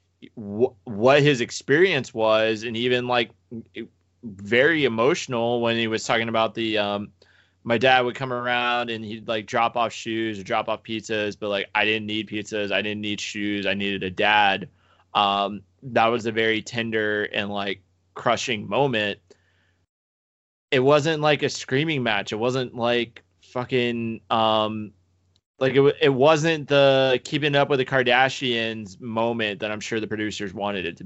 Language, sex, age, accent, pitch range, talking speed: English, male, 20-39, American, 100-120 Hz, 165 wpm